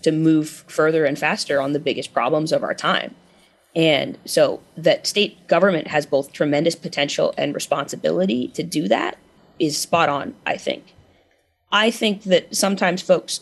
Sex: female